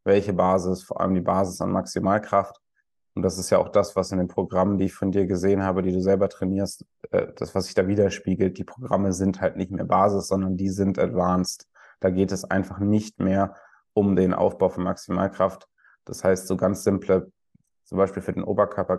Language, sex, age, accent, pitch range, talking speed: German, male, 20-39, German, 95-100 Hz, 205 wpm